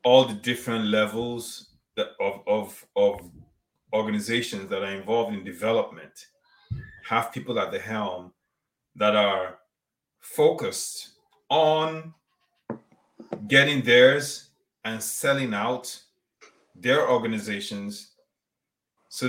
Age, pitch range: 30-49, 110-160 Hz